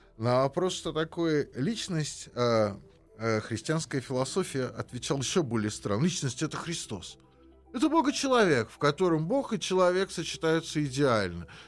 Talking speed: 140 wpm